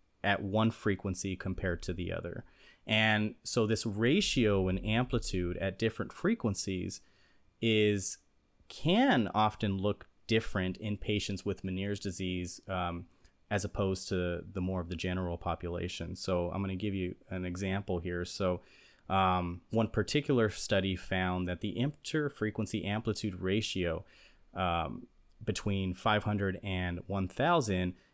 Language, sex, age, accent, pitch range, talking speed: English, male, 30-49, American, 90-110 Hz, 130 wpm